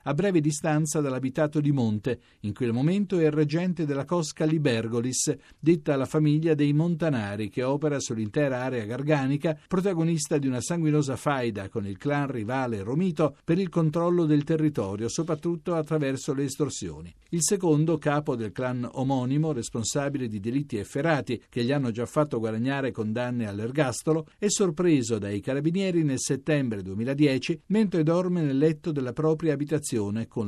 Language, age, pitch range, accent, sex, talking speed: Italian, 50-69, 125-165 Hz, native, male, 150 wpm